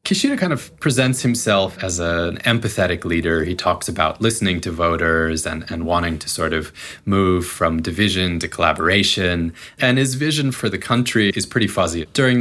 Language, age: English, 20-39